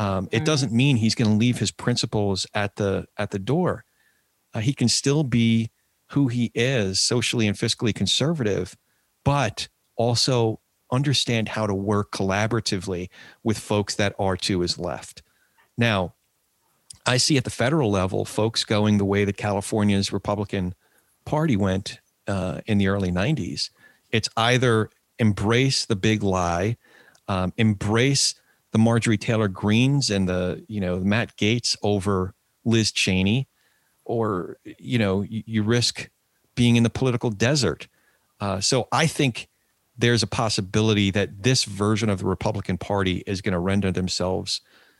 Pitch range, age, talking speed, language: 100-120 Hz, 40-59, 150 wpm, English